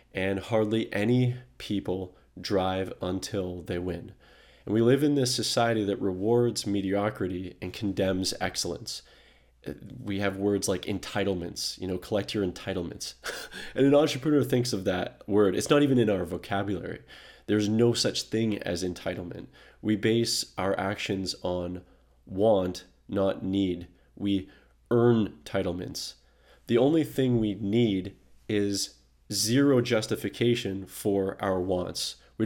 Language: English